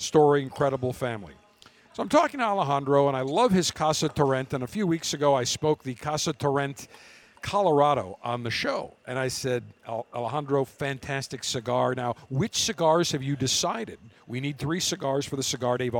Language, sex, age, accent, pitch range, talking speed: English, male, 50-69, American, 125-160 Hz, 180 wpm